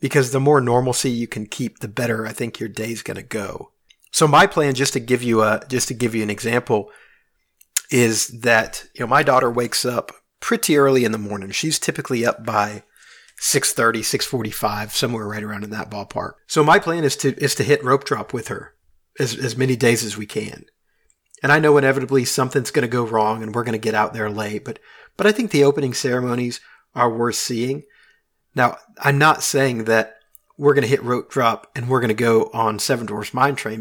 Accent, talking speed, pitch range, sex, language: American, 210 wpm, 115-140 Hz, male, English